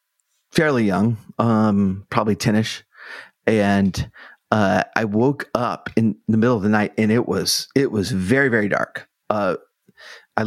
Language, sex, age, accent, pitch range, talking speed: English, male, 30-49, American, 105-120 Hz, 150 wpm